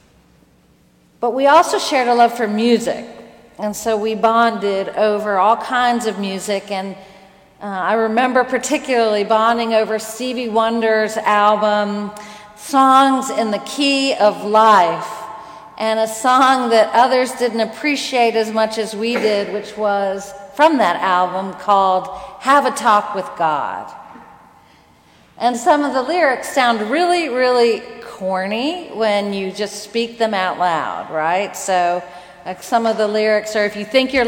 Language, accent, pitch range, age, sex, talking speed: English, American, 190-230 Hz, 40-59, female, 145 wpm